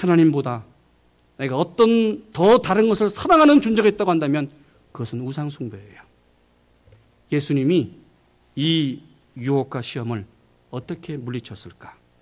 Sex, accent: male, native